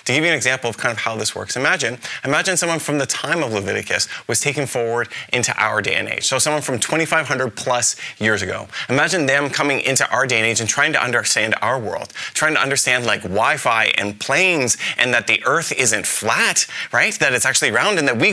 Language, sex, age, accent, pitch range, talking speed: English, male, 20-39, American, 120-155 Hz, 225 wpm